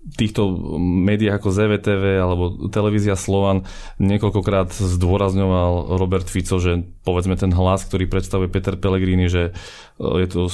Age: 20-39